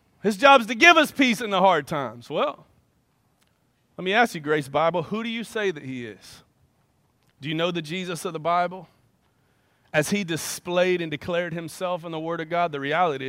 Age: 30-49